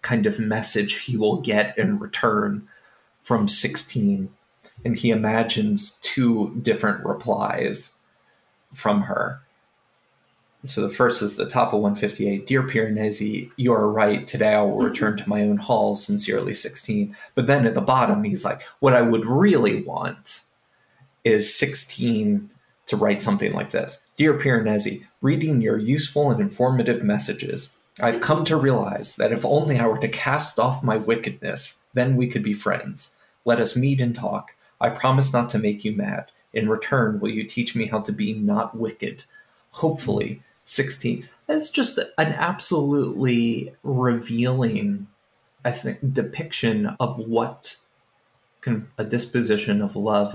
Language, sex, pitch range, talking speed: English, male, 110-160 Hz, 150 wpm